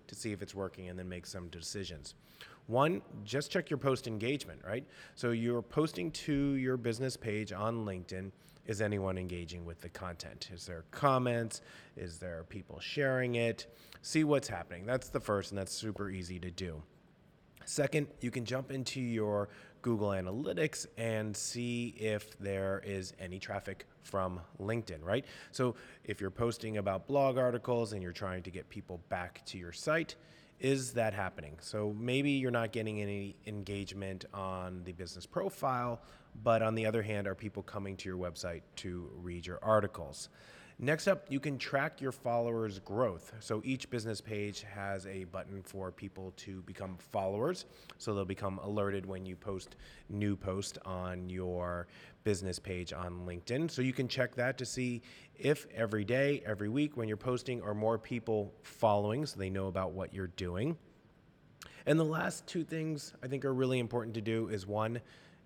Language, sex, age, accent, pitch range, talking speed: English, male, 30-49, American, 95-125 Hz, 175 wpm